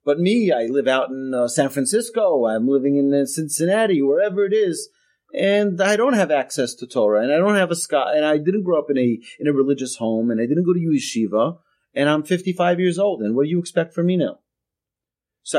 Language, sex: English, male